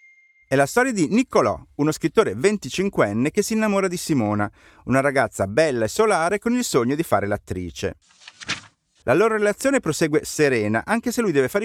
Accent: native